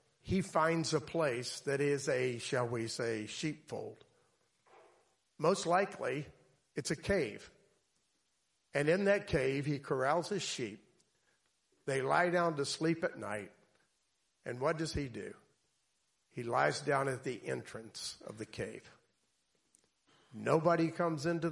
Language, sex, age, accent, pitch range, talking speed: English, male, 50-69, American, 130-180 Hz, 135 wpm